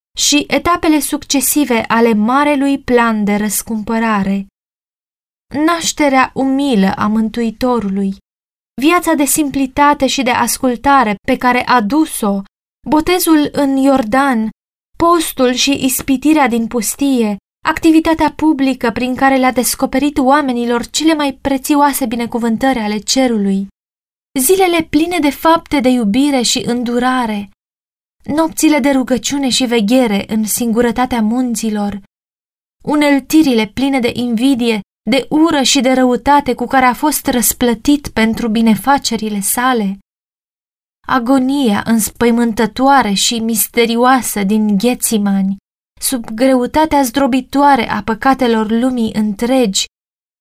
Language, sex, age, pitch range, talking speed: Romanian, female, 20-39, 225-275 Hz, 105 wpm